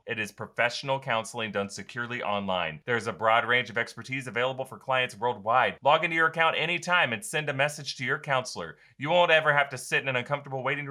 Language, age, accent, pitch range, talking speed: English, 30-49, American, 120-155 Hz, 215 wpm